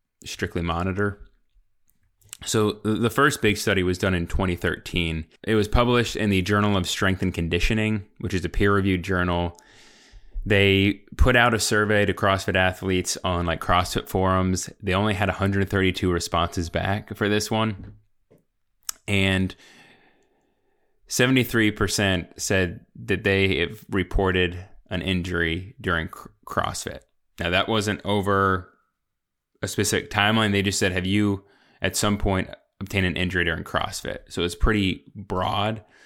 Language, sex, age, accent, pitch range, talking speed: English, male, 20-39, American, 90-105 Hz, 140 wpm